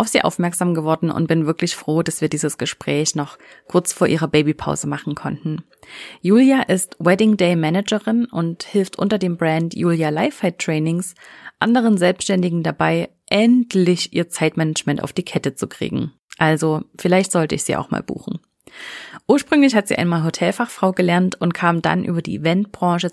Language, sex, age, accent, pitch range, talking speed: German, female, 30-49, German, 165-200 Hz, 160 wpm